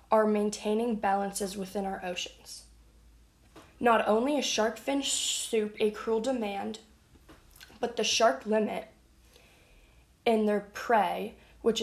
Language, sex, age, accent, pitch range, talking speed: English, female, 10-29, American, 195-225 Hz, 115 wpm